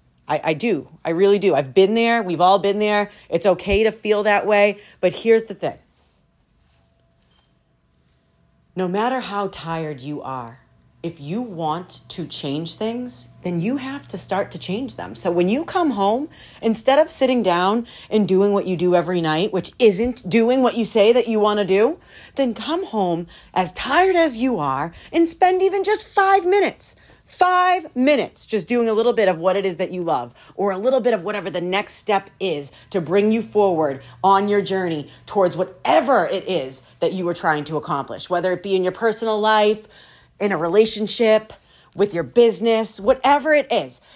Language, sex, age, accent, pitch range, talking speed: English, female, 40-59, American, 175-235 Hz, 190 wpm